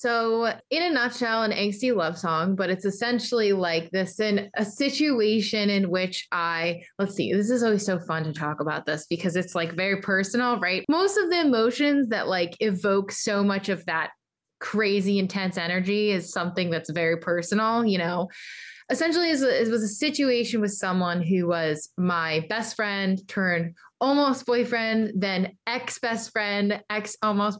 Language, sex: English, female